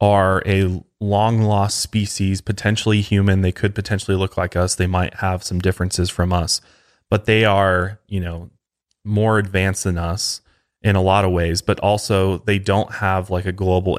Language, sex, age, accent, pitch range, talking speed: English, male, 20-39, American, 90-105 Hz, 180 wpm